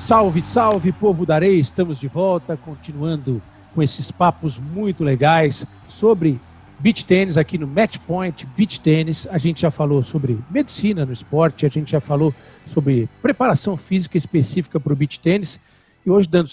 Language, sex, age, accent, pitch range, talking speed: Portuguese, male, 50-69, Brazilian, 140-170 Hz, 165 wpm